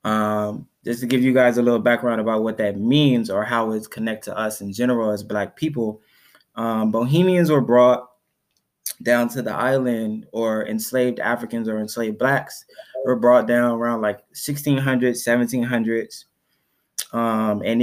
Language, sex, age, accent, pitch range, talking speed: English, male, 20-39, American, 110-125 Hz, 160 wpm